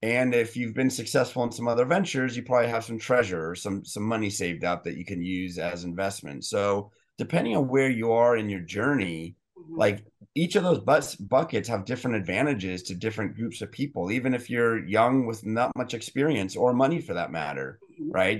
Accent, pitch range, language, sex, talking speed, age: American, 100-130 Hz, English, male, 205 wpm, 30-49